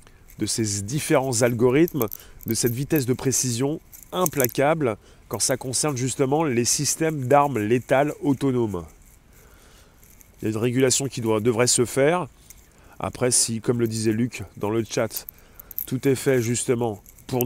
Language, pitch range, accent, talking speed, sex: French, 110-140 Hz, French, 145 wpm, male